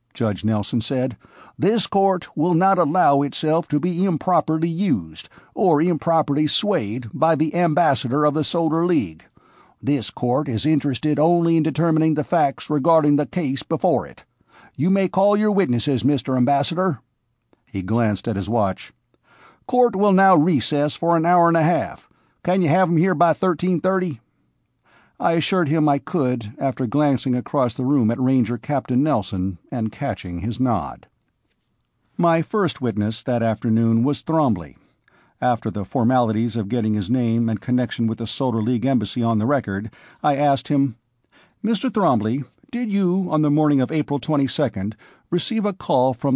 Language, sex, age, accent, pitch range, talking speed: English, male, 50-69, American, 120-170 Hz, 160 wpm